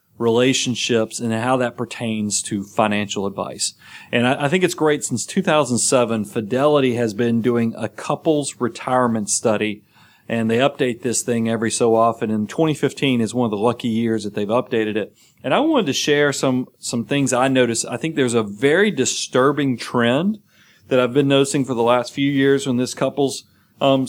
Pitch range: 115-145 Hz